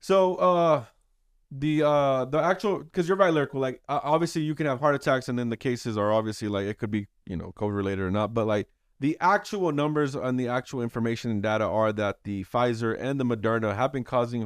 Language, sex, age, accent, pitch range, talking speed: English, male, 20-39, American, 115-150 Hz, 225 wpm